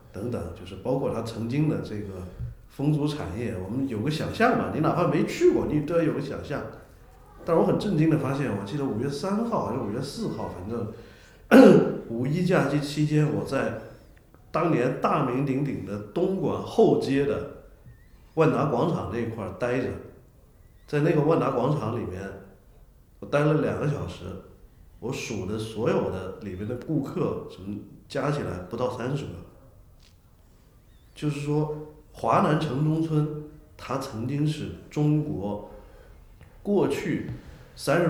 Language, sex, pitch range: Chinese, male, 105-150 Hz